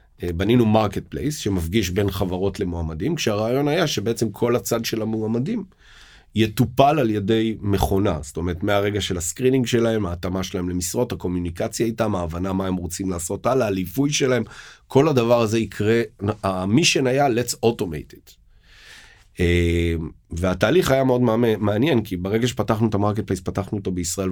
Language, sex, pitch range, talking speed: Hebrew, male, 90-115 Hz, 145 wpm